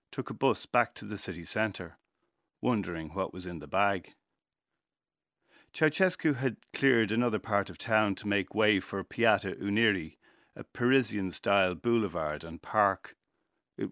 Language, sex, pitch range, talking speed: English, male, 95-115 Hz, 140 wpm